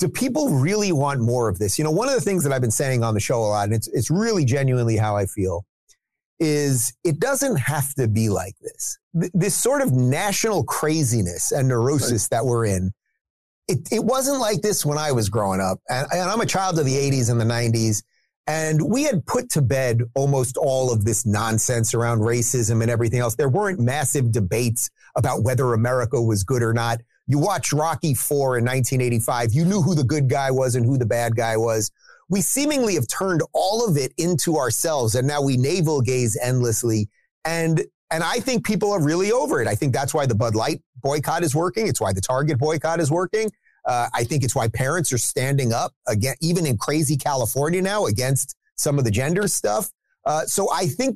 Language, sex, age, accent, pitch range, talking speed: English, male, 30-49, American, 115-160 Hz, 215 wpm